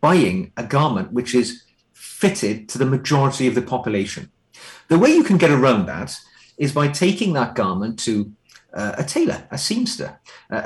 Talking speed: 175 wpm